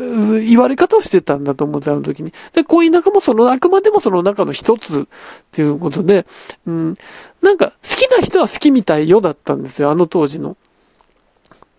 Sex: male